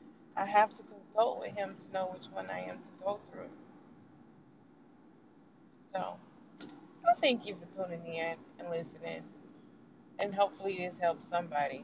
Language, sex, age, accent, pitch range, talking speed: English, female, 20-39, American, 175-270 Hz, 145 wpm